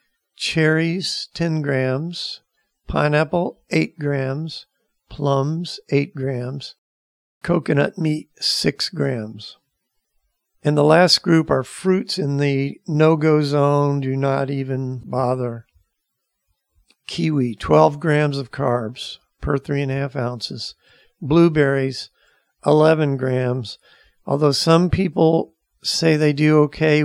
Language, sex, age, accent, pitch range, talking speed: English, male, 50-69, American, 135-155 Hz, 105 wpm